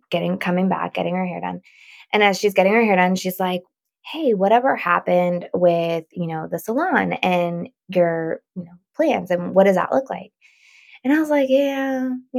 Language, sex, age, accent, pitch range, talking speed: English, female, 20-39, American, 175-220 Hz, 195 wpm